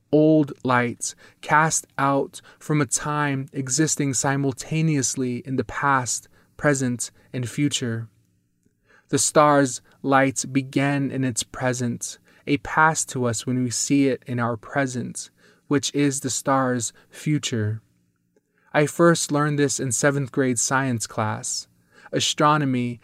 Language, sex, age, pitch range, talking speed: English, male, 20-39, 120-145 Hz, 125 wpm